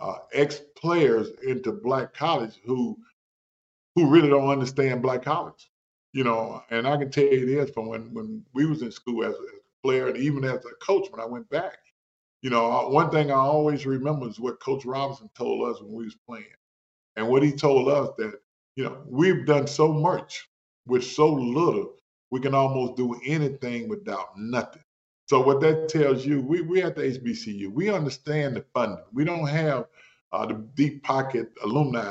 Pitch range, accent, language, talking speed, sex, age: 125-155 Hz, American, English, 190 wpm, male, 40-59